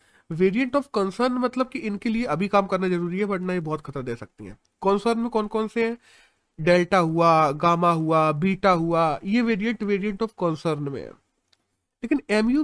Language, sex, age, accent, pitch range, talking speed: Hindi, male, 30-49, native, 165-230 Hz, 185 wpm